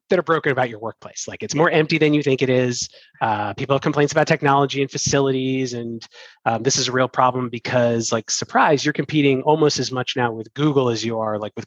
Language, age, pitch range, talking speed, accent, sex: English, 30-49, 120-145 Hz, 230 wpm, American, male